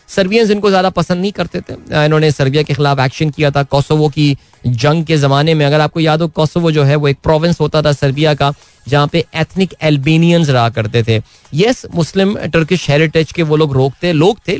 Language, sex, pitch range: Hindi, male, 140-165 Hz